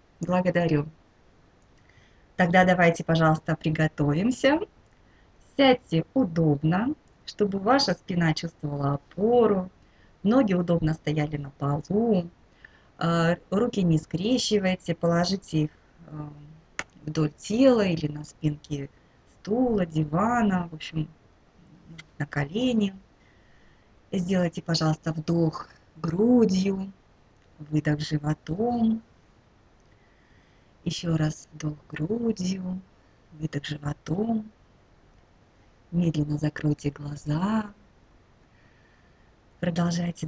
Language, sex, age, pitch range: Russian, female, 20-39, 150-195 Hz